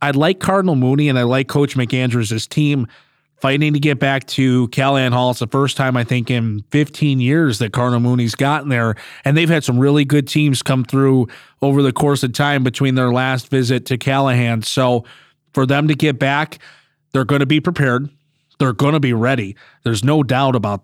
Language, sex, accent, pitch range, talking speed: English, male, American, 125-145 Hz, 205 wpm